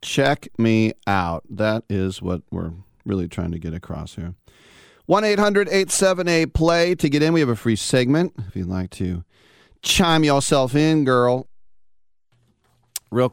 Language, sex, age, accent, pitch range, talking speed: English, male, 40-59, American, 100-130 Hz, 140 wpm